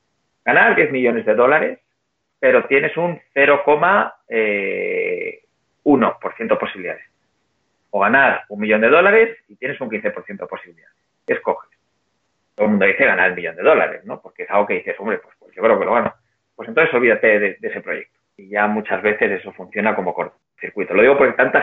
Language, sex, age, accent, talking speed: Spanish, male, 30-49, Spanish, 185 wpm